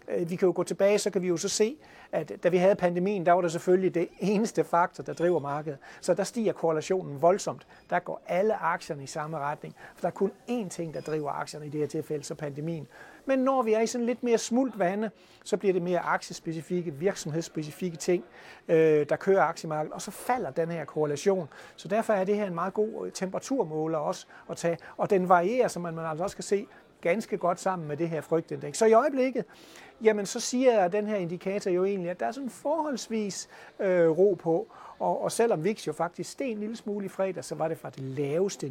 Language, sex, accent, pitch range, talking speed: Danish, male, native, 160-200 Hz, 225 wpm